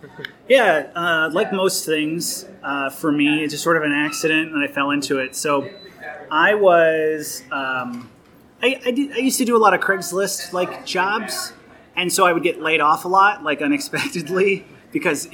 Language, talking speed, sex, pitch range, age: English, 180 wpm, male, 145-190 Hz, 30-49